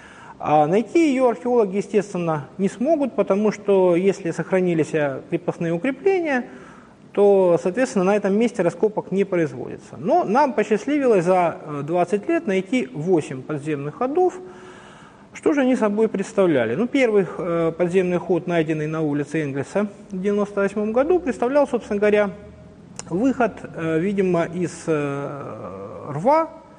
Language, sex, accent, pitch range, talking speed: Russian, male, native, 170-235 Hz, 120 wpm